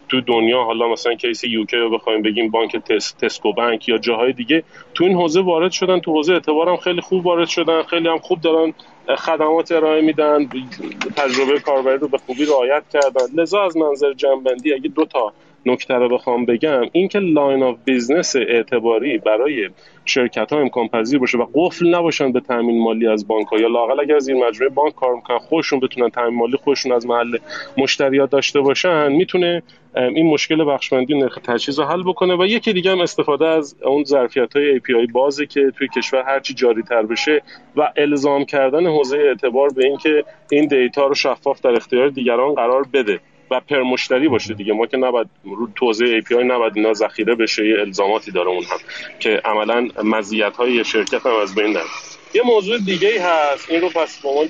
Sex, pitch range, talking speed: male, 125-165 Hz, 185 wpm